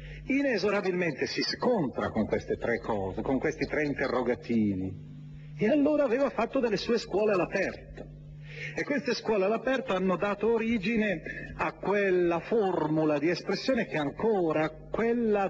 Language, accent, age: Italian, native, 40-59